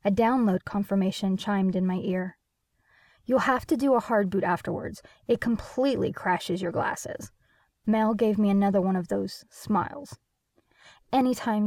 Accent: American